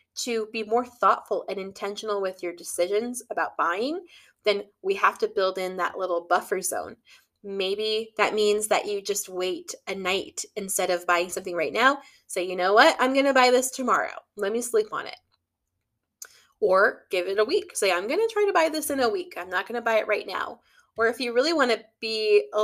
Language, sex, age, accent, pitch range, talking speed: English, female, 20-39, American, 195-265 Hz, 210 wpm